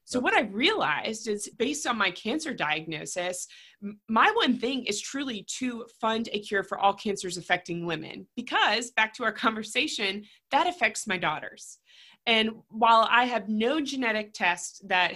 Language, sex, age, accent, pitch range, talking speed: English, female, 20-39, American, 180-230 Hz, 160 wpm